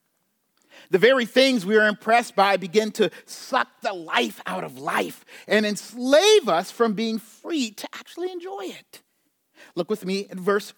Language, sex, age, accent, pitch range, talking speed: English, male, 40-59, American, 200-285 Hz, 165 wpm